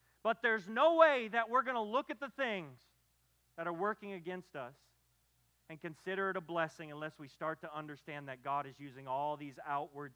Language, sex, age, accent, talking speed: English, male, 40-59, American, 200 wpm